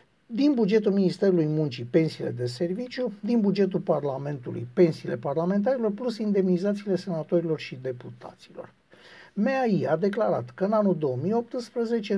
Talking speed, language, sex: 120 wpm, Romanian, male